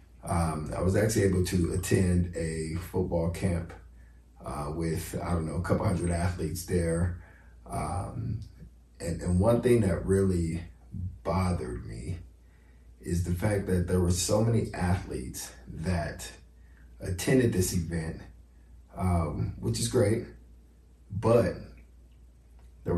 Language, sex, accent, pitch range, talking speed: English, male, American, 80-95 Hz, 125 wpm